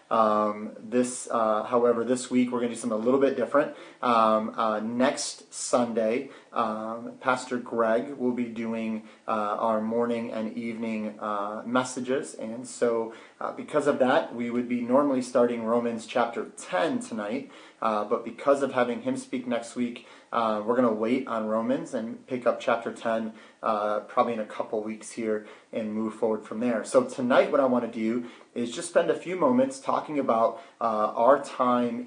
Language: English